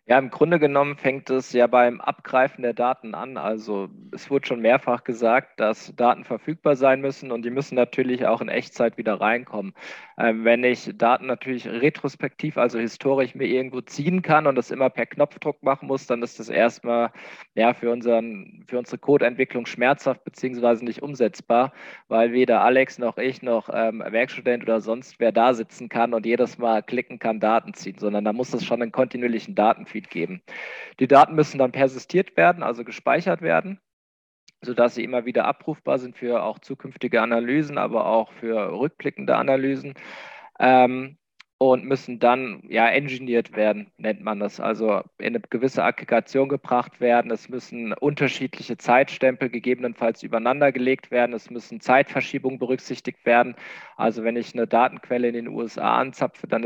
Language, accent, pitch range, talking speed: German, German, 115-135 Hz, 165 wpm